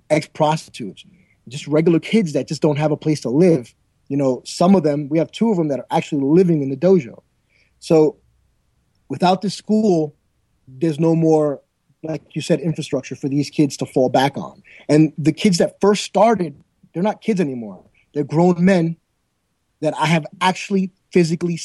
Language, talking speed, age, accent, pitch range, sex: English, 180 wpm, 30-49, American, 145-180 Hz, male